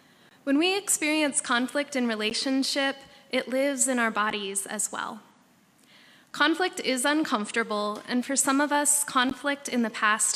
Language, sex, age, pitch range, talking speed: English, female, 10-29, 225-280 Hz, 145 wpm